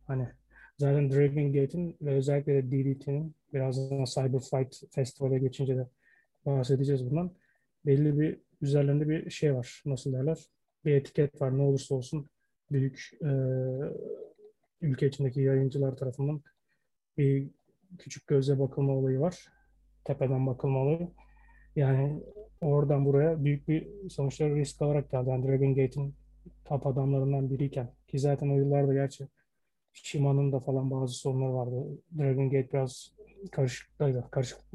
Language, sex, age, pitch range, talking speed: Turkish, male, 30-49, 135-145 Hz, 130 wpm